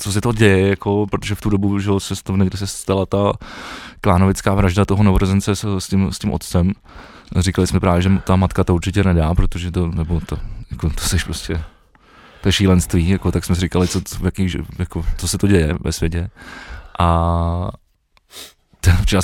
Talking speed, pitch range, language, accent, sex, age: 180 wpm, 90-100 Hz, Czech, native, male, 20-39